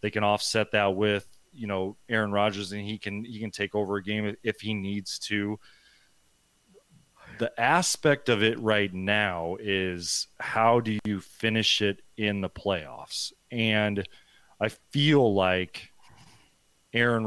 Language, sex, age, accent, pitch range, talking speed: English, male, 30-49, American, 100-115 Hz, 145 wpm